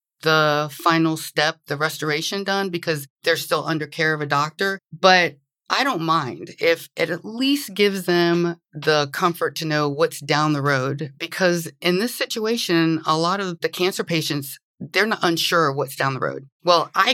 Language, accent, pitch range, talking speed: English, American, 150-195 Hz, 180 wpm